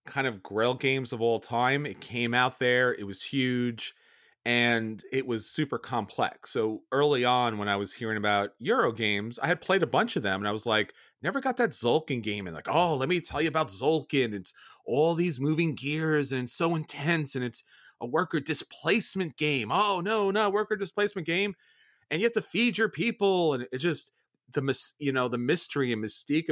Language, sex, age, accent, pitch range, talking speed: English, male, 30-49, American, 115-165 Hz, 210 wpm